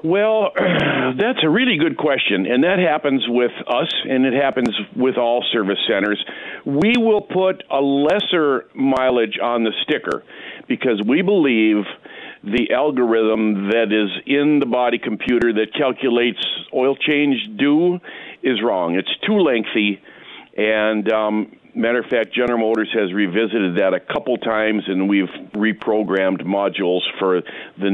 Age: 50-69